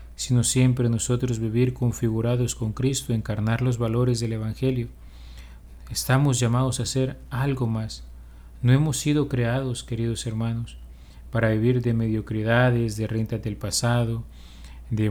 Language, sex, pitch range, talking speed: Spanish, male, 105-120 Hz, 130 wpm